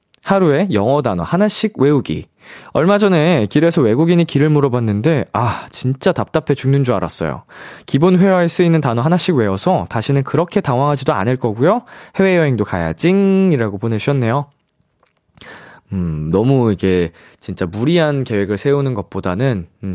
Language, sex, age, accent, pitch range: Korean, male, 20-39, native, 115-175 Hz